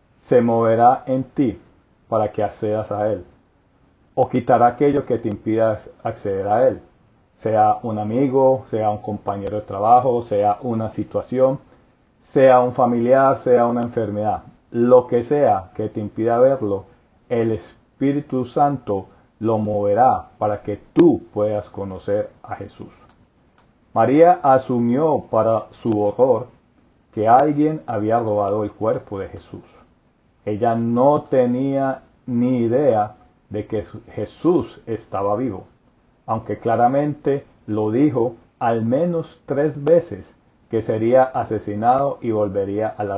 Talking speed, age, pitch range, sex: 130 wpm, 40-59, 105-130 Hz, male